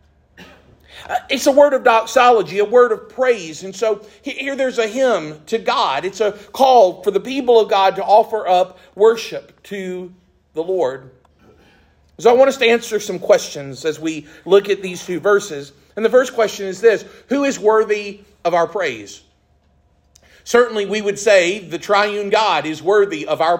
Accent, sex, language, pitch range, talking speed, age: American, male, English, 175-230 Hz, 180 wpm, 50-69